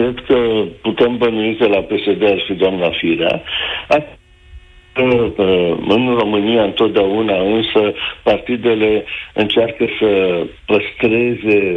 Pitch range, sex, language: 95-115 Hz, male, Romanian